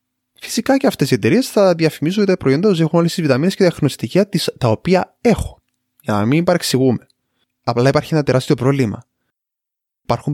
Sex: male